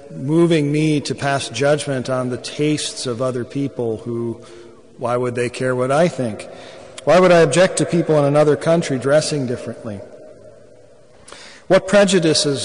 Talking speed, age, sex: 150 wpm, 40-59, male